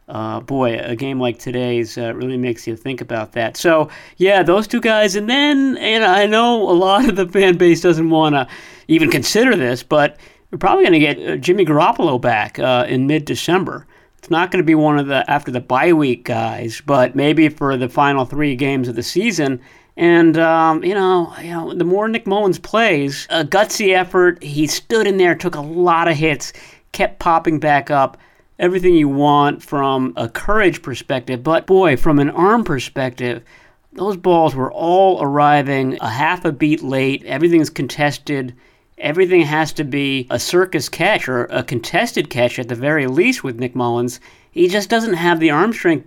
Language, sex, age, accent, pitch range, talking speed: English, male, 50-69, American, 135-180 Hz, 195 wpm